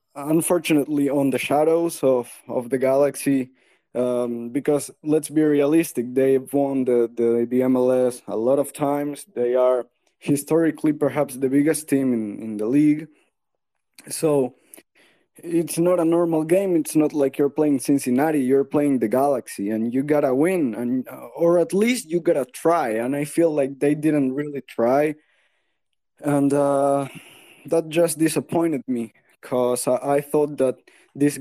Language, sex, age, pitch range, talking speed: English, male, 20-39, 130-155 Hz, 155 wpm